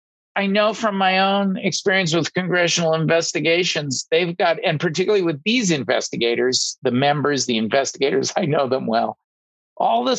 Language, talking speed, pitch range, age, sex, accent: English, 155 wpm, 135-190 Hz, 50-69, male, American